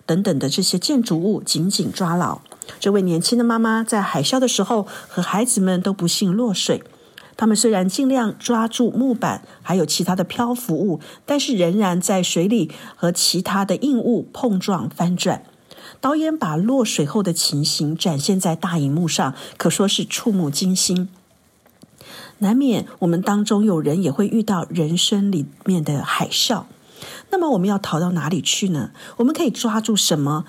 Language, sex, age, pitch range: Chinese, female, 50-69, 165-225 Hz